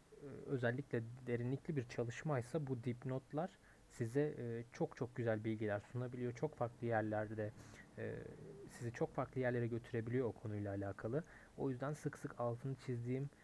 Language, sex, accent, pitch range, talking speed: Turkish, male, native, 110-135 Hz, 130 wpm